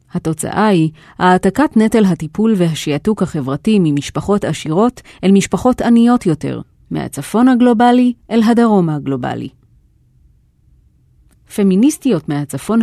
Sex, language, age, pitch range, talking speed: female, Hebrew, 30-49, 155-220 Hz, 95 wpm